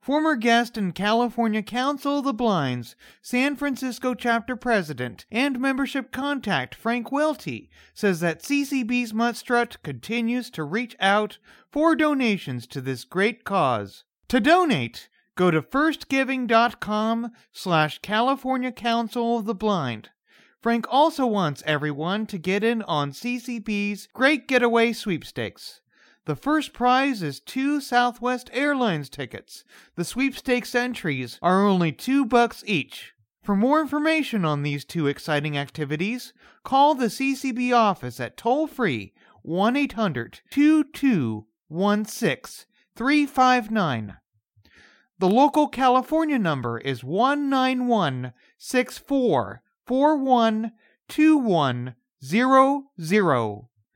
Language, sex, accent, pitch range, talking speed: English, male, American, 170-260 Hz, 100 wpm